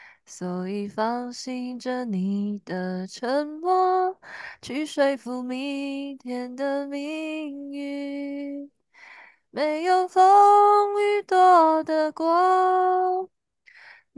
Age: 20-39